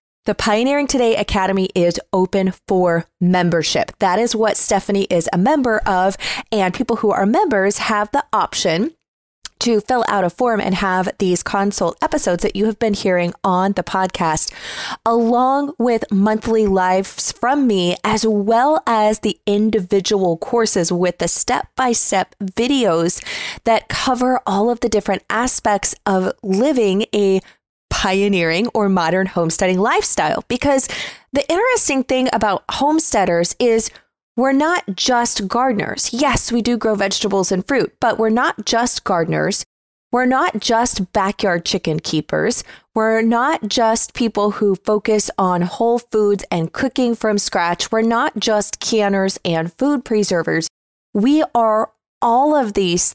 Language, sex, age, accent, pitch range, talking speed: English, female, 20-39, American, 190-235 Hz, 145 wpm